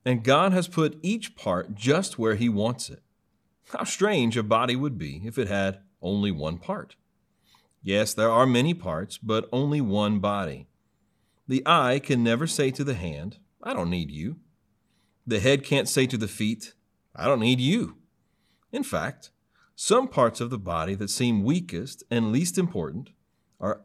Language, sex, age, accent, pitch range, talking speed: English, male, 40-59, American, 105-140 Hz, 175 wpm